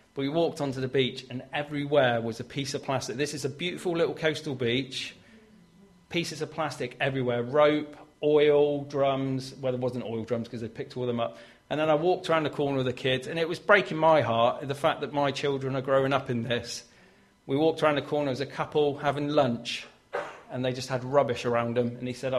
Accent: British